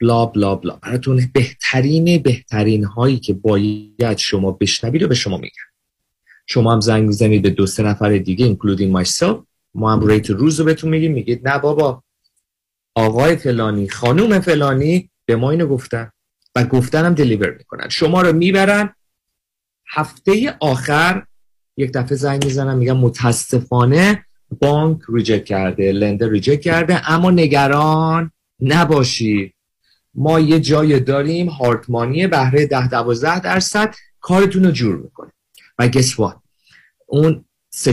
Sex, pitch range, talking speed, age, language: male, 110-155 Hz, 130 wpm, 40-59, Persian